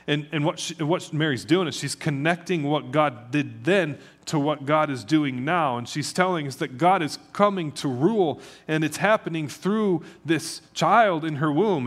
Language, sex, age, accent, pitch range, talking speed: English, male, 30-49, American, 135-175 Hz, 195 wpm